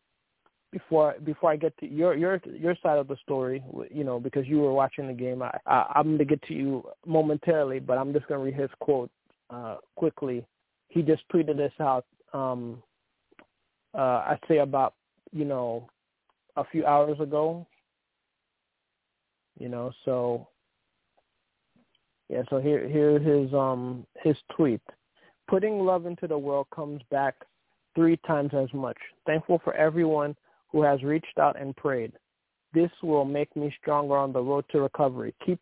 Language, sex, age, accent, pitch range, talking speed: English, male, 20-39, American, 135-155 Hz, 160 wpm